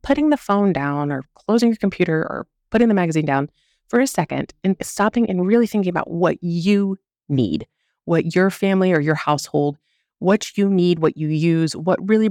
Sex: female